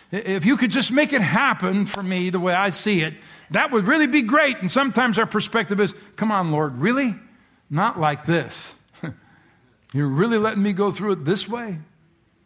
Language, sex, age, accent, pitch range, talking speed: English, male, 60-79, American, 150-205 Hz, 195 wpm